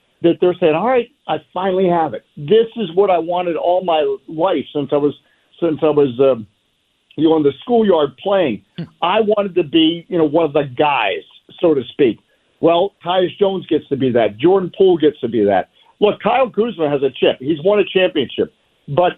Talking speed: 210 wpm